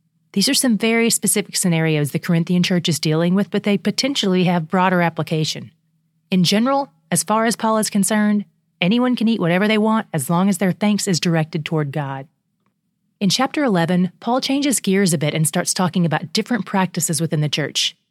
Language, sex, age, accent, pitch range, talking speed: English, female, 30-49, American, 165-215 Hz, 190 wpm